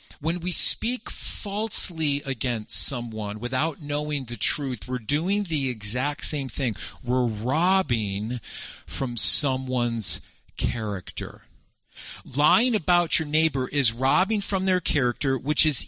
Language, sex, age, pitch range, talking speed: English, male, 50-69, 120-170 Hz, 120 wpm